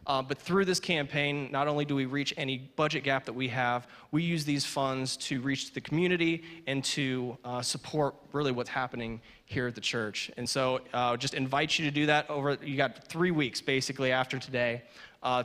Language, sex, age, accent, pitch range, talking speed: English, male, 20-39, American, 125-145 Hz, 205 wpm